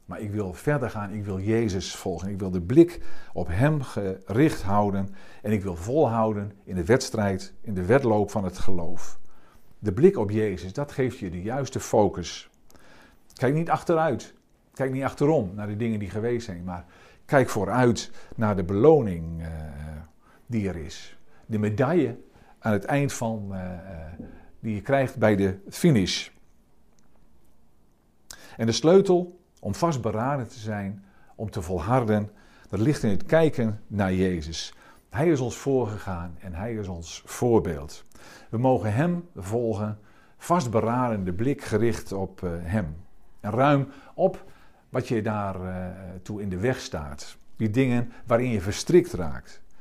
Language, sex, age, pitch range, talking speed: Dutch, male, 50-69, 95-125 Hz, 150 wpm